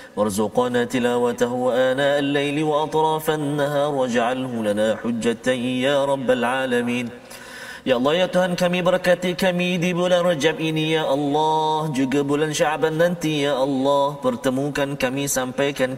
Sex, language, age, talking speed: male, Malayalam, 30-49, 125 wpm